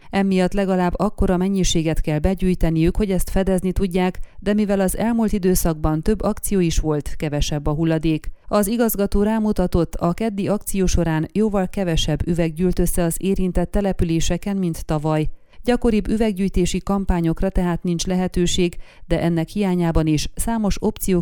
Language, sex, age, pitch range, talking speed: Hungarian, female, 30-49, 165-195 Hz, 145 wpm